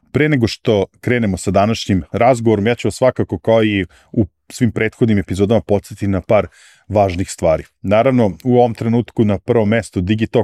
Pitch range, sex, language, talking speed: 95-115 Hz, male, English, 160 wpm